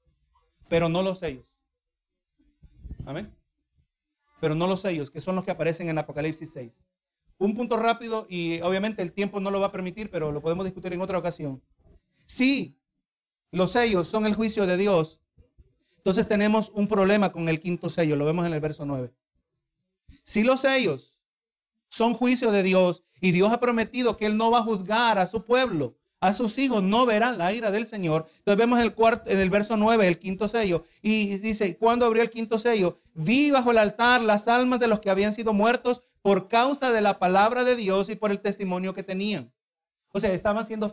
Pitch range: 180-230 Hz